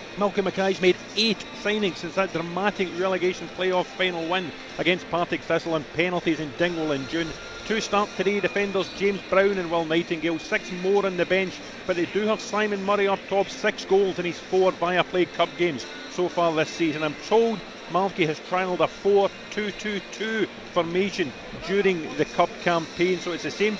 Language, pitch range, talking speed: English, 165-195 Hz, 180 wpm